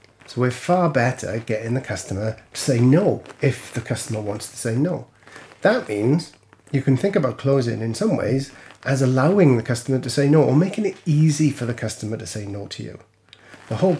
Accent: British